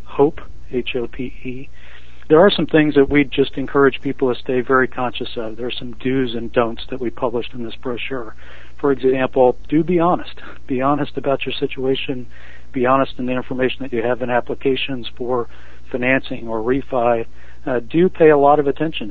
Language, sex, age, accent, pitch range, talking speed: English, male, 50-69, American, 115-135 Hz, 185 wpm